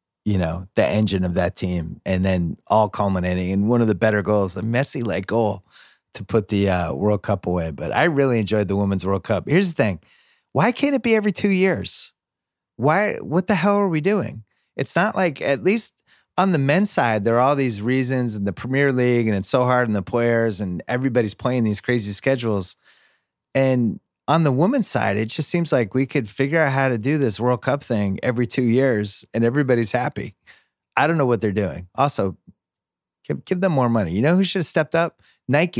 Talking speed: 220 wpm